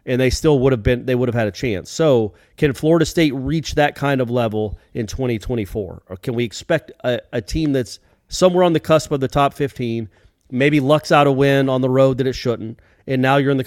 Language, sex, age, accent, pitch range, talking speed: English, male, 40-59, American, 120-160 Hz, 240 wpm